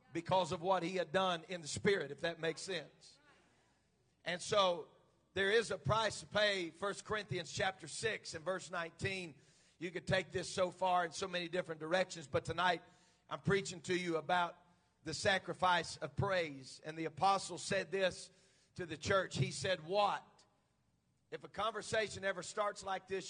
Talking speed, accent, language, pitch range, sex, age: 175 wpm, American, English, 165-210 Hz, male, 40-59